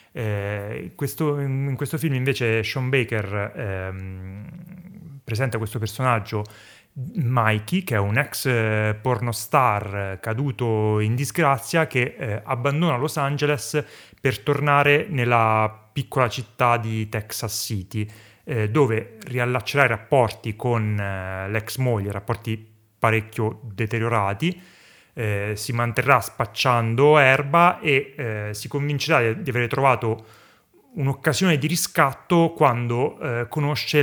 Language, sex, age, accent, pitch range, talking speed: Italian, male, 30-49, native, 110-140 Hz, 115 wpm